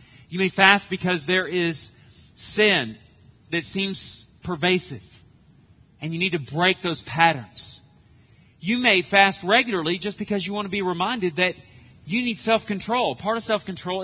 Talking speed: 150 wpm